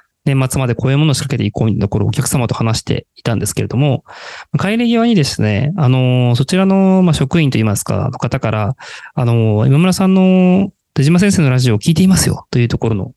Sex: male